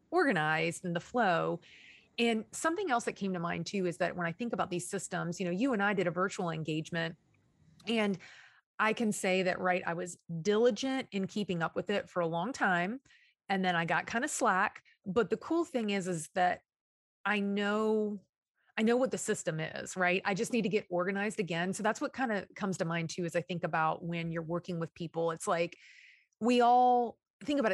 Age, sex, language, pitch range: 30-49, female, English, 175-220 Hz